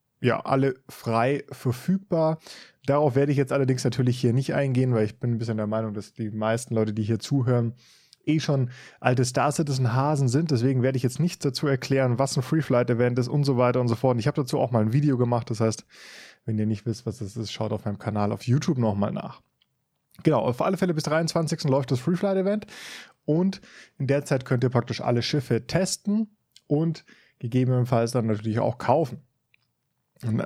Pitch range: 120-155 Hz